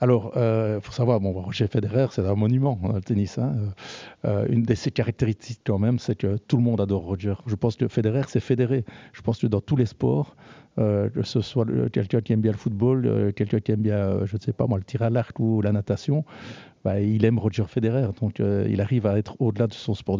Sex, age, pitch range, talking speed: male, 60-79, 100-115 Hz, 245 wpm